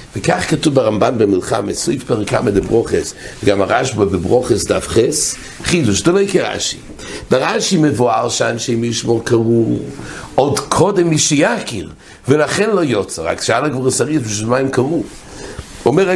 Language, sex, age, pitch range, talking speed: English, male, 60-79, 120-170 Hz, 125 wpm